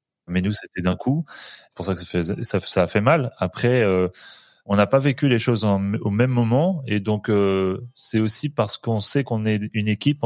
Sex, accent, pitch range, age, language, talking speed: male, French, 95-120 Hz, 30-49, French, 235 wpm